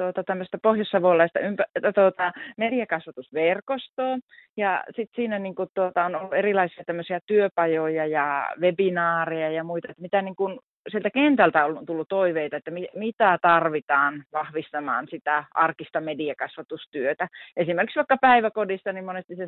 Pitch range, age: 155-190 Hz, 30-49